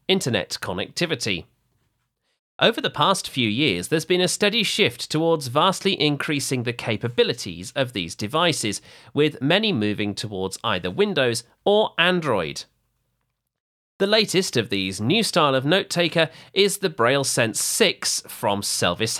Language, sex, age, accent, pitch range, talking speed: English, male, 40-59, British, 110-165 Hz, 135 wpm